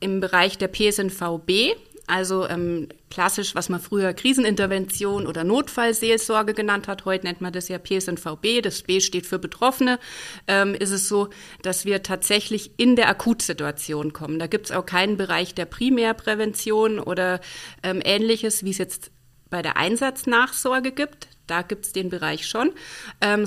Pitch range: 185-225 Hz